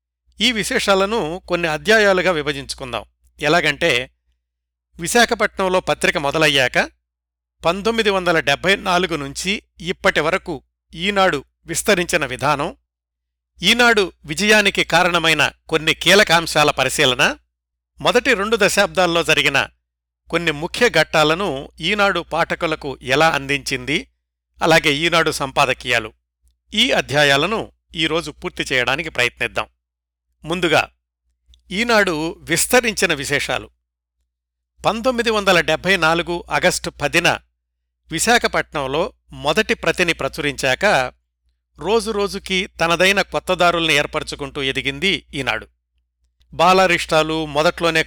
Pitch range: 125-185 Hz